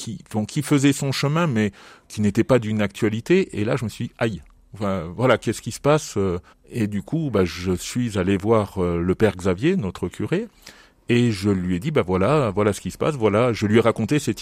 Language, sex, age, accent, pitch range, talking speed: French, male, 40-59, French, 100-140 Hz, 235 wpm